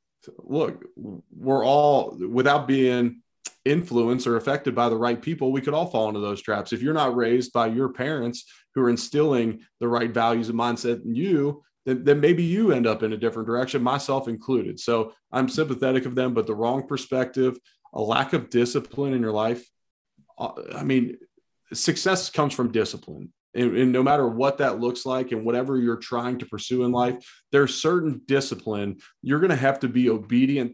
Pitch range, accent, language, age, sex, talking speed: 120-140 Hz, American, English, 30-49, male, 185 wpm